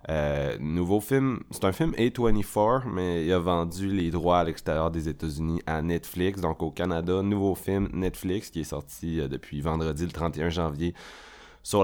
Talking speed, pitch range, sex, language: 175 wpm, 80-95 Hz, male, French